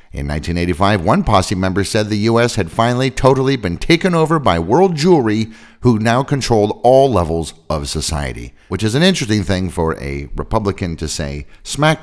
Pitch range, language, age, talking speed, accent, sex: 75-115 Hz, English, 50-69, 175 wpm, American, male